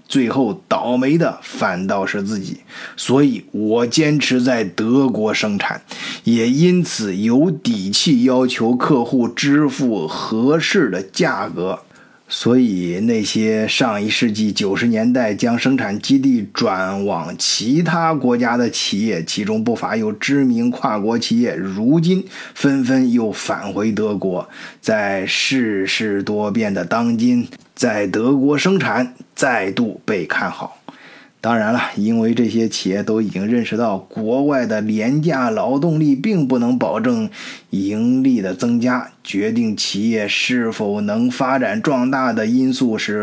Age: 20-39